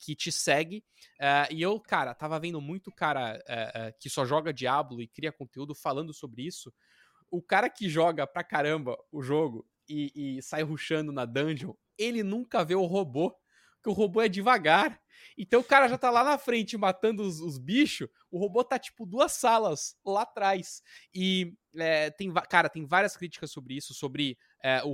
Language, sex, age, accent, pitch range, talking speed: Portuguese, male, 20-39, Brazilian, 135-180 Hz, 175 wpm